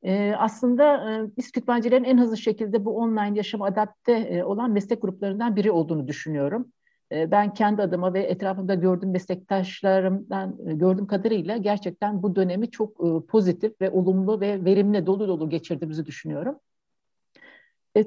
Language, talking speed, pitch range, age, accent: Turkish, 130 wpm, 190-235 Hz, 60-79, native